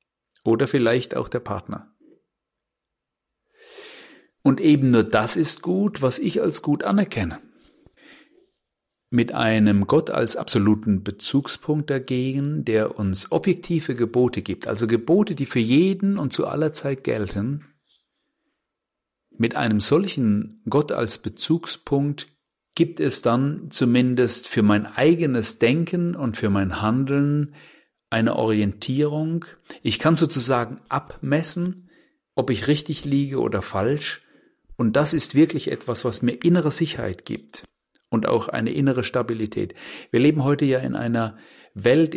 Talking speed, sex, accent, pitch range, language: 130 wpm, male, German, 115-155 Hz, German